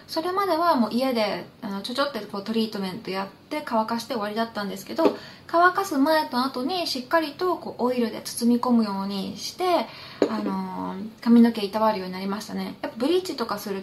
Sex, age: female, 20-39